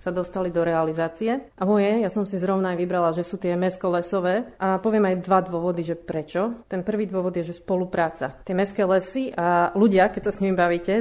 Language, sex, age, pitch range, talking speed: Slovak, female, 30-49, 175-195 Hz, 205 wpm